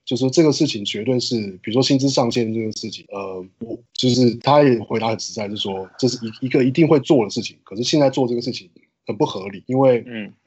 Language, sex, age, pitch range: Chinese, male, 20-39, 105-125 Hz